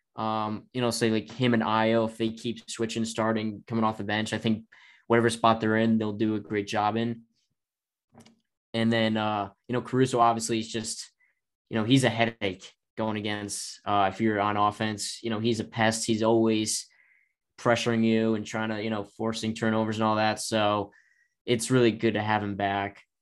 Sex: male